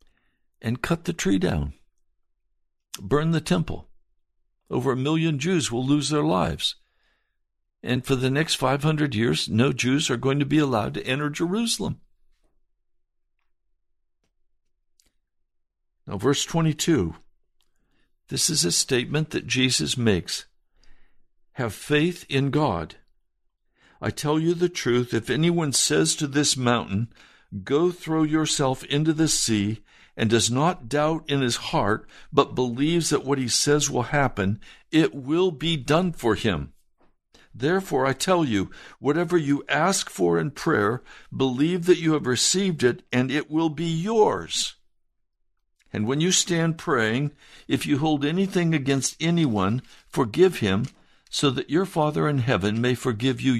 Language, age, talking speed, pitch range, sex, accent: English, 60-79, 140 wpm, 125-160 Hz, male, American